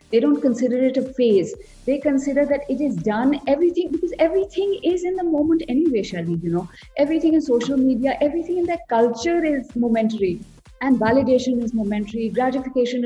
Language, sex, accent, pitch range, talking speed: English, female, Indian, 235-310 Hz, 175 wpm